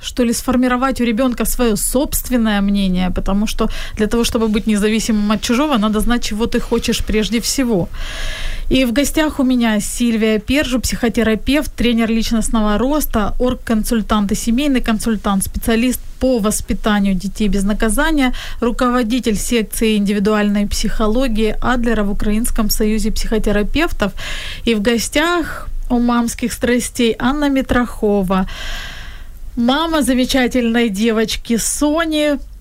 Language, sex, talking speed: Ukrainian, female, 120 wpm